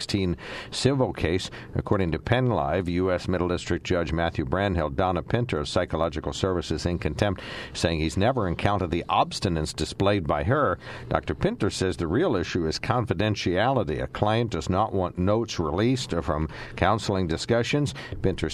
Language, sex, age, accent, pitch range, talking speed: English, male, 60-79, American, 80-100 Hz, 150 wpm